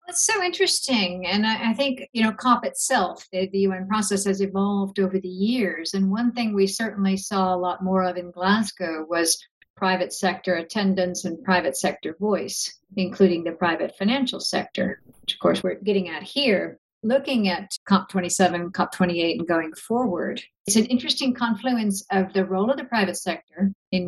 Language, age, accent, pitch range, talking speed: English, 50-69, American, 185-230 Hz, 180 wpm